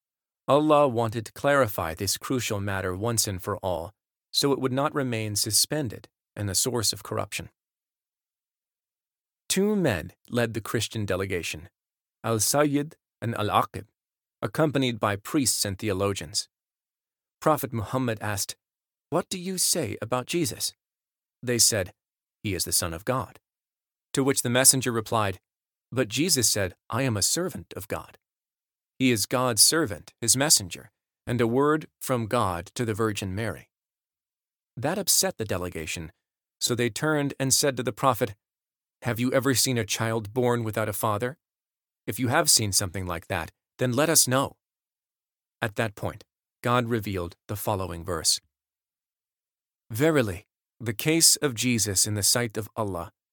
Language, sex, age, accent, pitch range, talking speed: English, male, 40-59, American, 100-130 Hz, 150 wpm